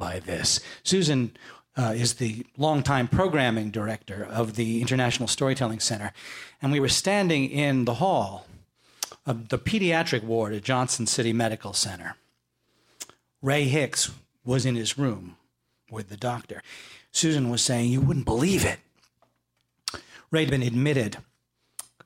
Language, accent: English, American